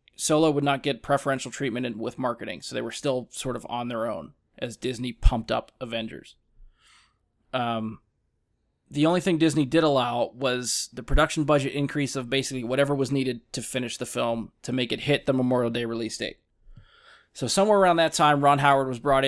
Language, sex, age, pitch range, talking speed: English, male, 20-39, 125-150 Hz, 190 wpm